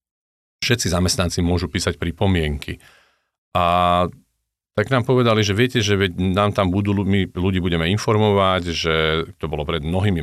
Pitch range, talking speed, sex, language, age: 85-100 Hz, 140 wpm, male, Slovak, 40-59